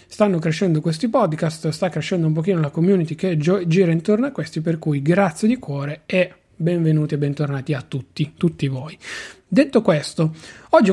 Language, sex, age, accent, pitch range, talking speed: Italian, male, 30-49, native, 155-190 Hz, 170 wpm